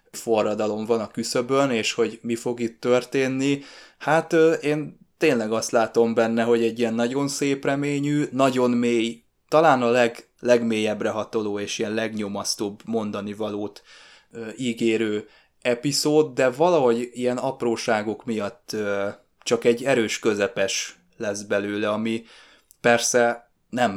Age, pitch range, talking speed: 20-39, 110-120 Hz, 125 wpm